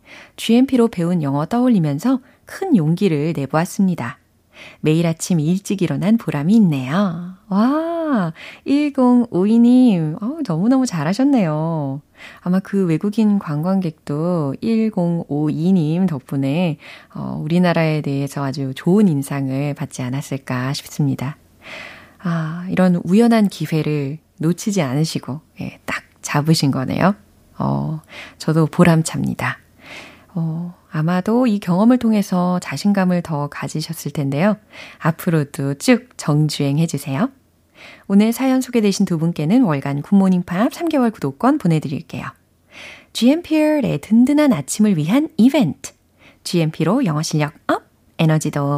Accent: native